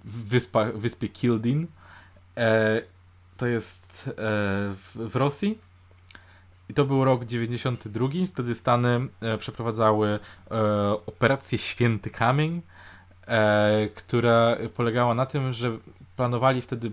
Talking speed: 90 wpm